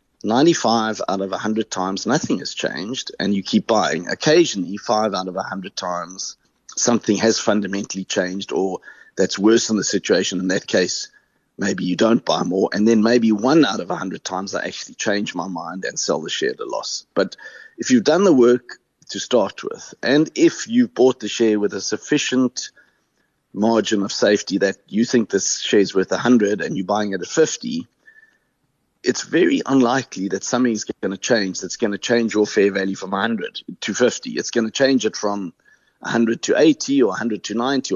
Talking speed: 200 wpm